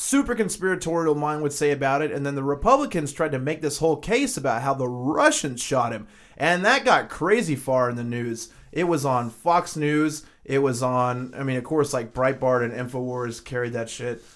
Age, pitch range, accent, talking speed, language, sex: 30-49, 125-160 Hz, American, 210 wpm, English, male